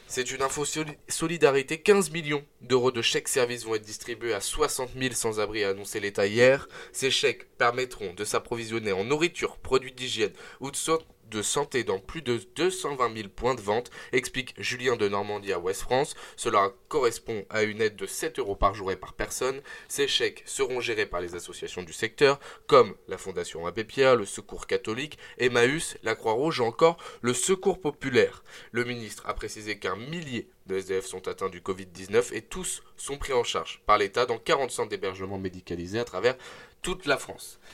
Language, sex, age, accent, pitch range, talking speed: French, male, 20-39, French, 110-150 Hz, 190 wpm